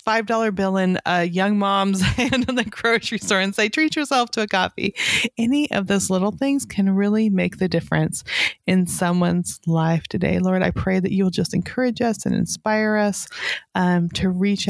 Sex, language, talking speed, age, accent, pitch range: female, English, 190 wpm, 30-49, American, 180-220 Hz